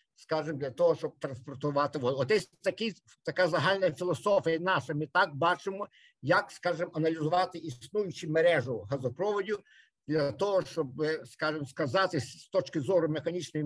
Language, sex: Ukrainian, male